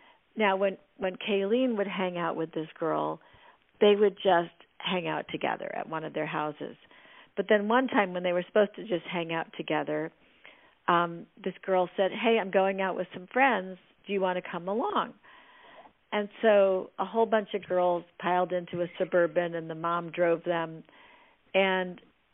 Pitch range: 175-205 Hz